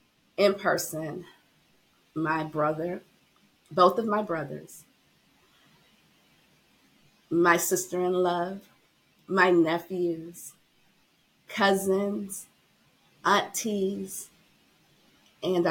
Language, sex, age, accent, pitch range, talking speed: English, female, 30-49, American, 170-210 Hz, 55 wpm